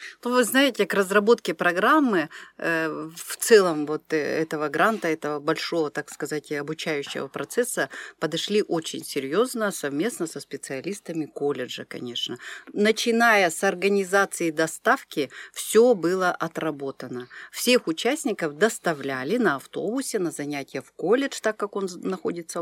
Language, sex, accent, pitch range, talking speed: Russian, female, native, 155-220 Hz, 115 wpm